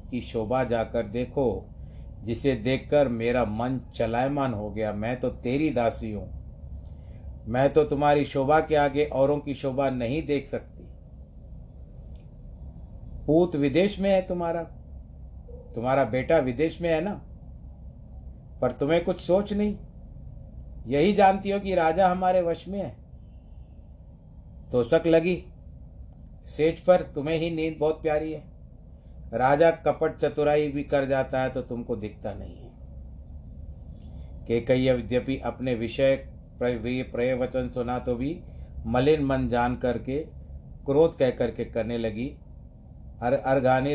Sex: male